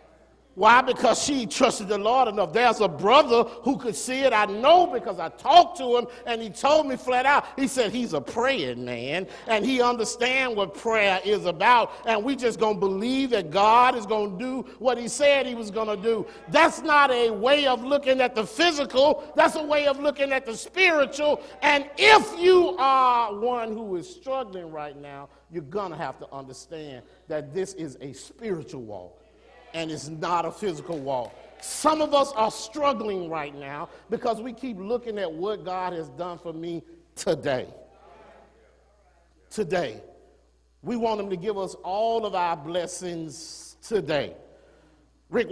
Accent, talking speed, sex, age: American, 180 wpm, male, 50-69